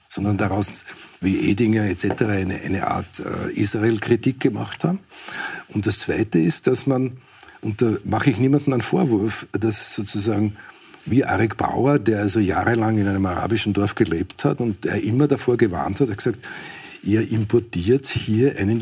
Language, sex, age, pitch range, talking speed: German, male, 50-69, 105-140 Hz, 165 wpm